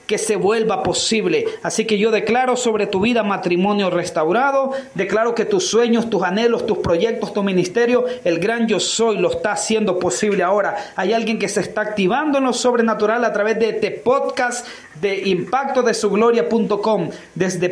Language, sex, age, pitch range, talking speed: Spanish, male, 40-59, 200-235 Hz, 175 wpm